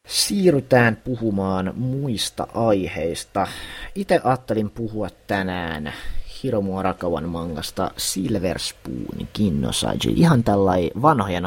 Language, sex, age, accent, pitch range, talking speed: Finnish, male, 30-49, native, 85-110 Hz, 80 wpm